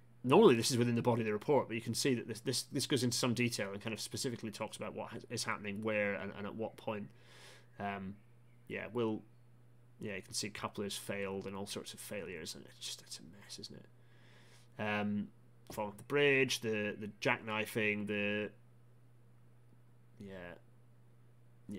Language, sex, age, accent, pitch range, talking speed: English, male, 30-49, British, 105-120 Hz, 185 wpm